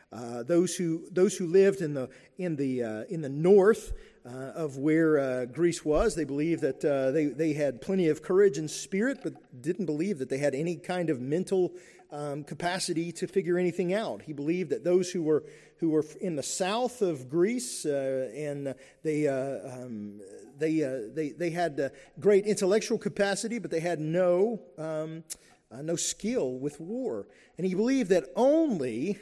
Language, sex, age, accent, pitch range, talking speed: English, male, 40-59, American, 140-190 Hz, 185 wpm